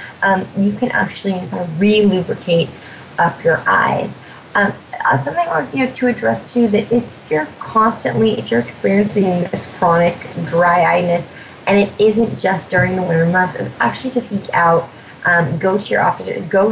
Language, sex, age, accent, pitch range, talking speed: English, female, 30-49, American, 170-210 Hz, 170 wpm